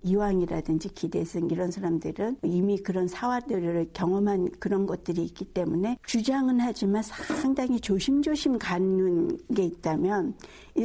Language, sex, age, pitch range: Korean, female, 60-79, 165-235 Hz